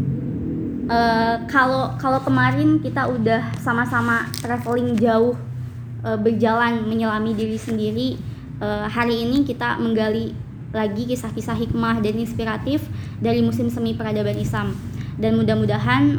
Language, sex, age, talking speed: Indonesian, male, 20-39, 115 wpm